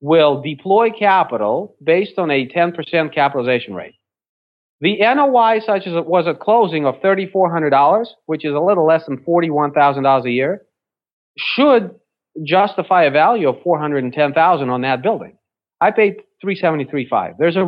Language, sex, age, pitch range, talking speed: English, male, 40-59, 130-195 Hz, 185 wpm